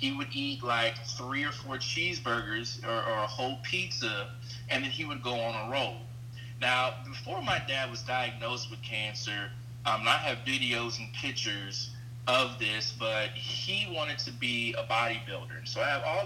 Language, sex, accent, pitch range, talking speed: English, male, American, 115-125 Hz, 175 wpm